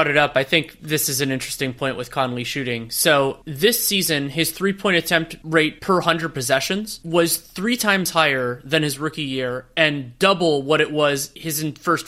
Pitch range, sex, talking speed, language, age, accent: 145-175 Hz, male, 185 wpm, English, 30-49, American